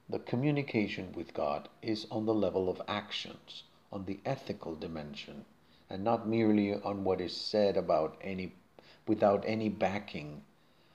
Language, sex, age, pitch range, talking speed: Spanish, male, 50-69, 85-110 Hz, 140 wpm